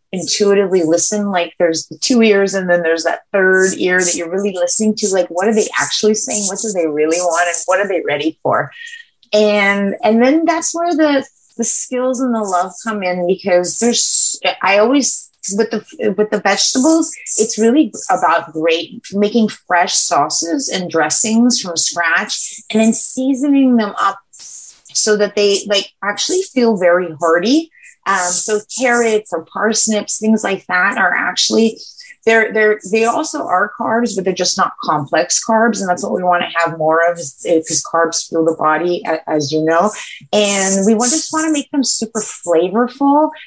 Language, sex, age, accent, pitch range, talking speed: English, female, 30-49, American, 180-230 Hz, 180 wpm